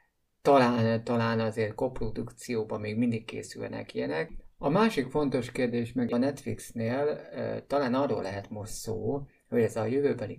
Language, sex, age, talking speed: Hungarian, male, 50-69, 140 wpm